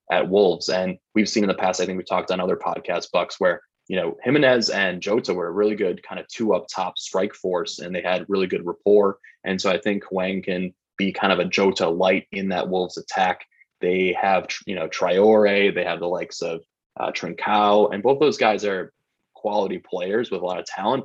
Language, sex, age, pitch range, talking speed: English, male, 20-39, 90-105 Hz, 225 wpm